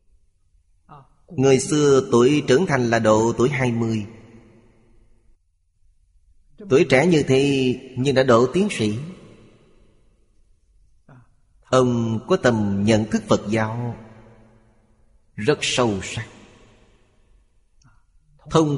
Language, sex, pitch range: Vietnamese, male, 105-130 Hz